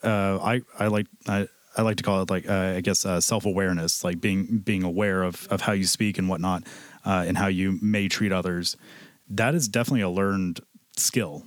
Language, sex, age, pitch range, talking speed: English, male, 30-49, 95-115 Hz, 210 wpm